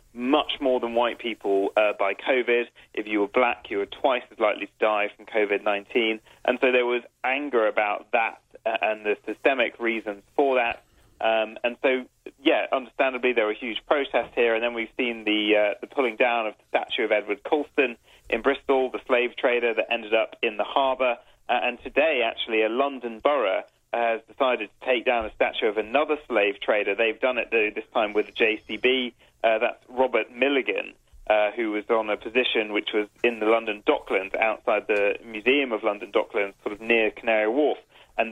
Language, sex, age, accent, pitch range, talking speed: English, male, 30-49, British, 105-125 Hz, 195 wpm